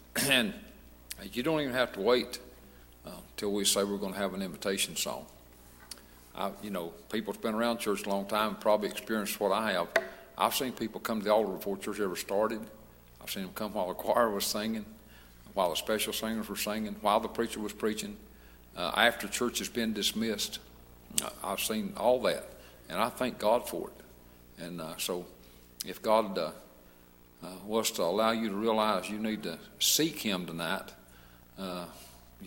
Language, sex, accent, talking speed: English, male, American, 185 wpm